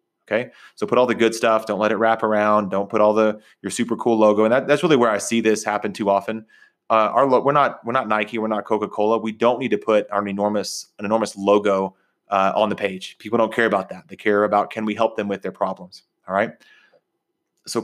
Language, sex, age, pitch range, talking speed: English, male, 30-49, 105-115 Hz, 250 wpm